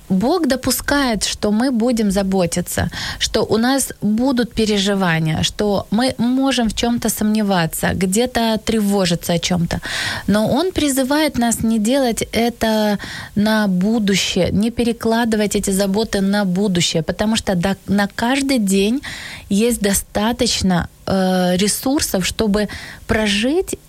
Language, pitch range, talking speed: Ukrainian, 195-235 Hz, 115 wpm